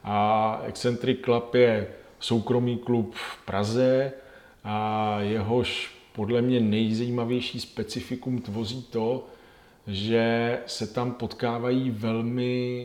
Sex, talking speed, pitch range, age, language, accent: male, 100 wpm, 105-120 Hz, 40-59, Czech, native